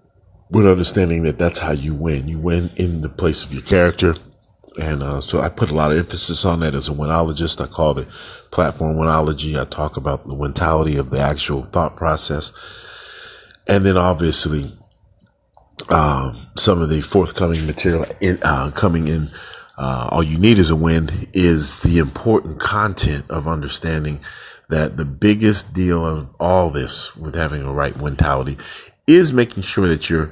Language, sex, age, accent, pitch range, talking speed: English, male, 40-59, American, 75-90 Hz, 175 wpm